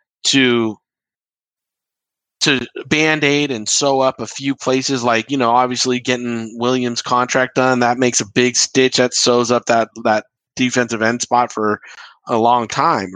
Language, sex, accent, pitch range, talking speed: English, male, American, 115-135 Hz, 155 wpm